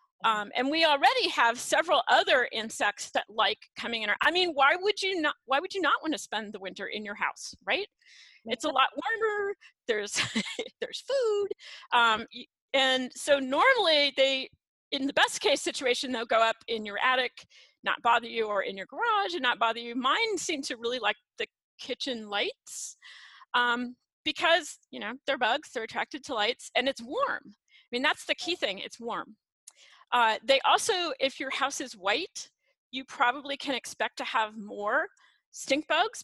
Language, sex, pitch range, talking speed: English, female, 235-315 Hz, 185 wpm